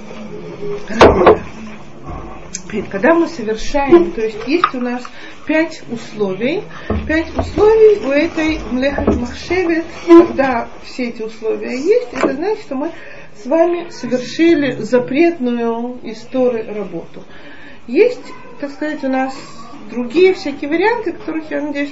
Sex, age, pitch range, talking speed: female, 40-59, 215-285 Hz, 110 wpm